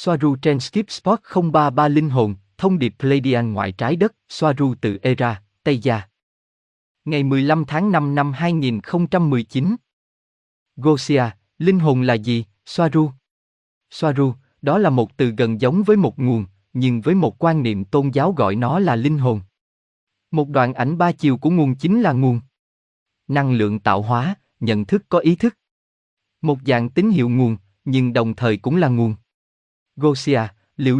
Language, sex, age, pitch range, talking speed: Vietnamese, male, 20-39, 110-155 Hz, 160 wpm